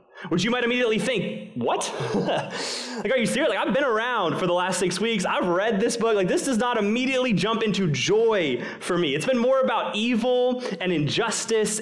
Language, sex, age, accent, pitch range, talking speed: English, male, 20-39, American, 170-225 Hz, 205 wpm